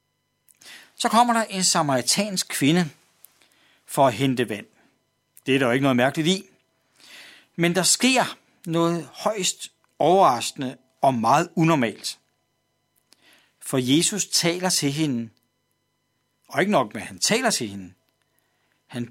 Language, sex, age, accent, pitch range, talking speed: Danish, male, 60-79, native, 130-185 Hz, 125 wpm